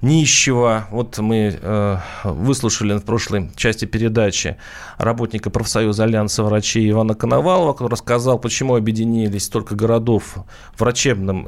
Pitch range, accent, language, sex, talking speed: 105-135 Hz, native, Russian, male, 115 wpm